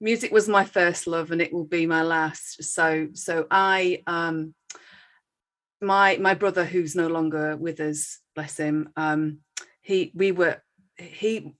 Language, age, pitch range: English, 40-59, 165-195 Hz